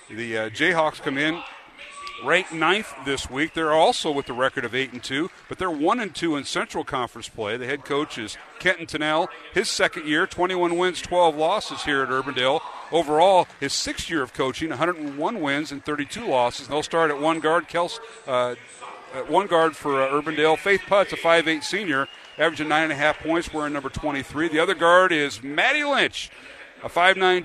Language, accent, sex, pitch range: English, American, male, 135-175 Hz